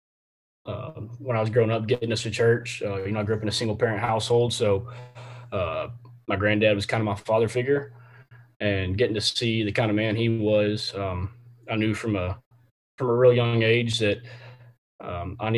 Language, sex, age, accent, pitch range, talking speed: English, male, 20-39, American, 105-120 Hz, 205 wpm